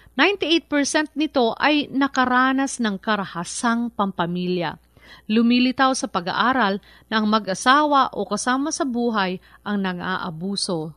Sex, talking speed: female, 105 wpm